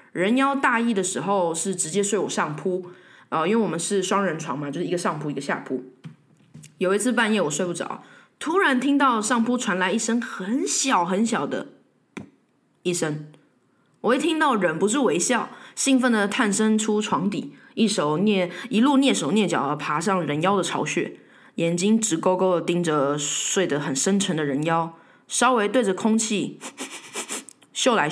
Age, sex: 20-39, female